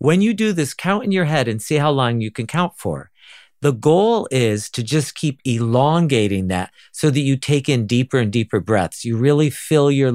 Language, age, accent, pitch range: English, 50-69, American, 110-160 Hz